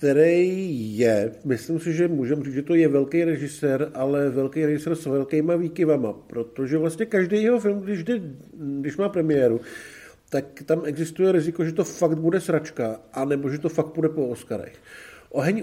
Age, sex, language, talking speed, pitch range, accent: 50-69, male, Czech, 175 wpm, 135-170 Hz, native